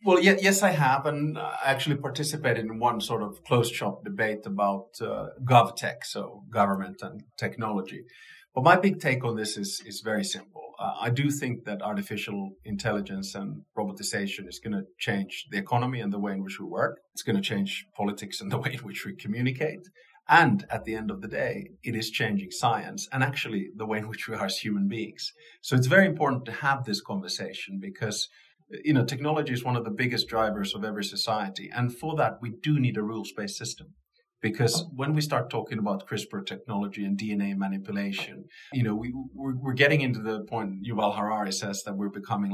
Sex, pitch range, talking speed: male, 100-135 Hz, 205 wpm